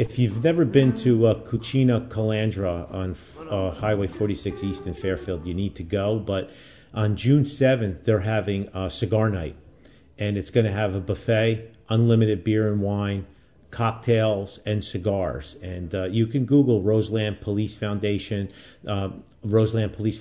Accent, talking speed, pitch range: American, 155 wpm, 90-110 Hz